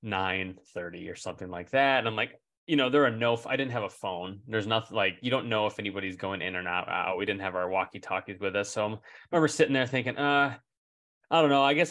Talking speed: 260 wpm